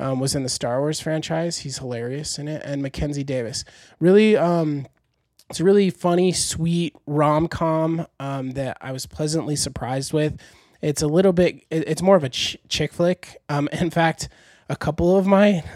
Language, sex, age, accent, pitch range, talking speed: English, male, 20-39, American, 135-165 Hz, 180 wpm